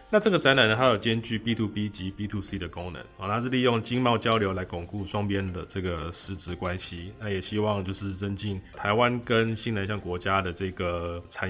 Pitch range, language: 95-120 Hz, Chinese